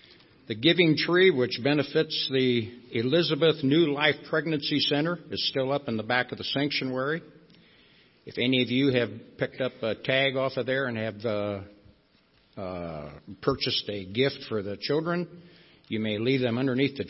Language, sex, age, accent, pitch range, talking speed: English, male, 60-79, American, 115-150 Hz, 170 wpm